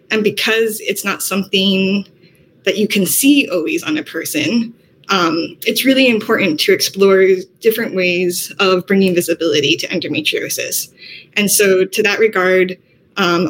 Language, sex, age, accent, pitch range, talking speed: French, female, 20-39, American, 180-220 Hz, 140 wpm